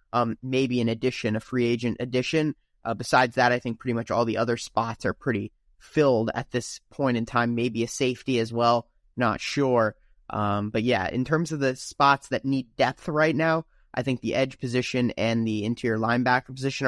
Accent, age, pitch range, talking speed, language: American, 20-39, 115-135 Hz, 205 wpm, English